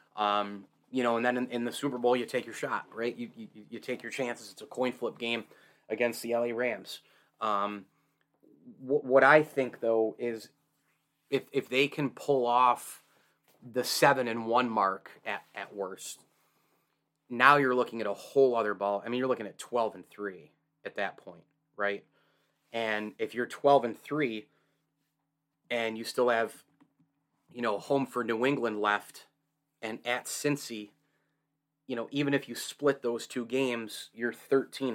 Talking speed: 175 wpm